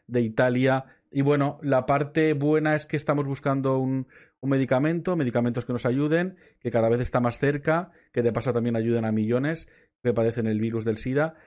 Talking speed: 195 wpm